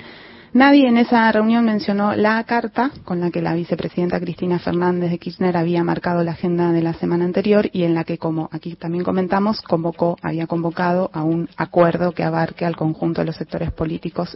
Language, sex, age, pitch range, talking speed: Spanish, female, 30-49, 165-195 Hz, 190 wpm